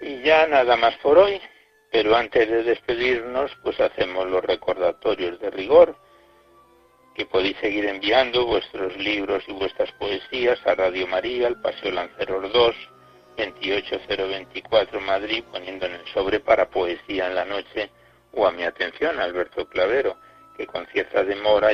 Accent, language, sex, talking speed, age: Spanish, Spanish, male, 145 wpm, 60-79